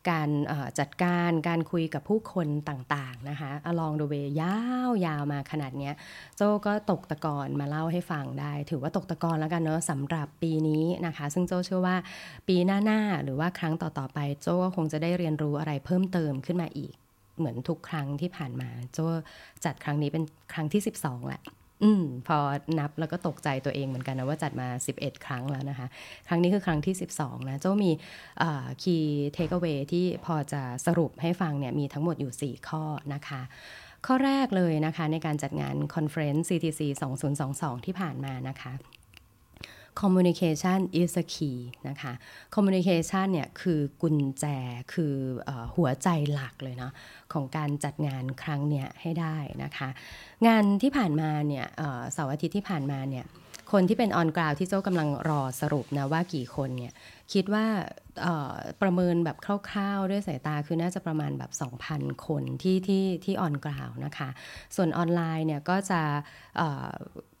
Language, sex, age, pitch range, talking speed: English, female, 20-39, 140-175 Hz, 30 wpm